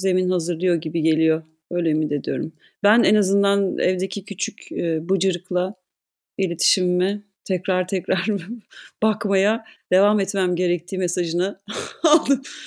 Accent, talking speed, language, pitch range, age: native, 105 wpm, Turkish, 175-225 Hz, 40-59